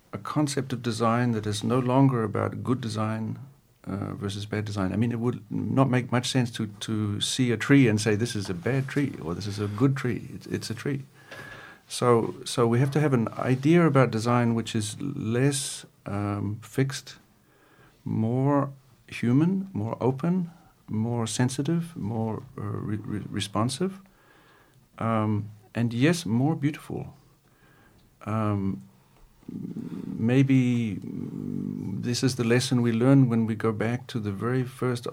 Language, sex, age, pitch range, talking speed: Turkish, male, 50-69, 110-130 Hz, 155 wpm